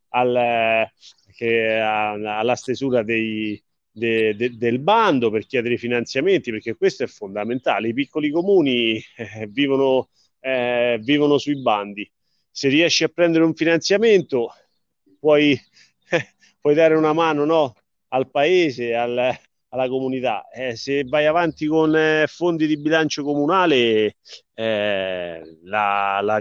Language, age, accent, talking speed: Italian, 30-49, native, 125 wpm